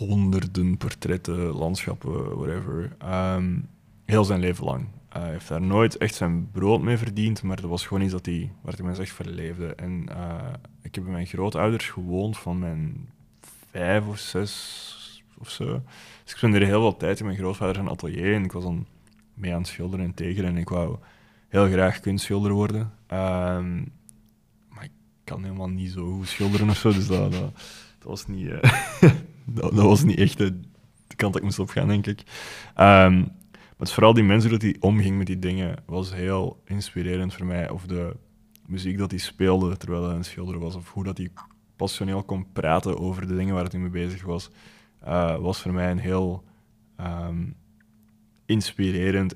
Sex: male